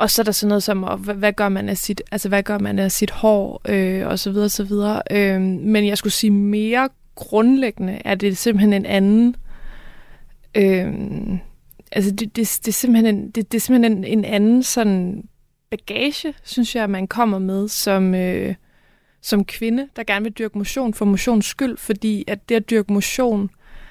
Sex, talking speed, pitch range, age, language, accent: female, 195 wpm, 205-235 Hz, 20-39, Danish, native